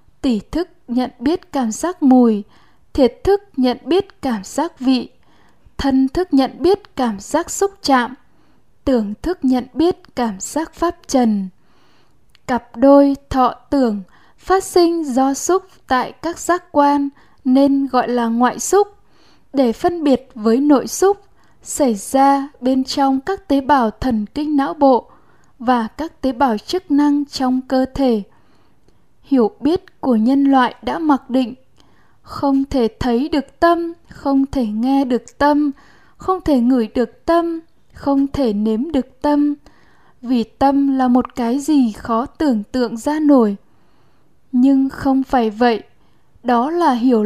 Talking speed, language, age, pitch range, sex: 150 wpm, Vietnamese, 10-29, 245-300 Hz, female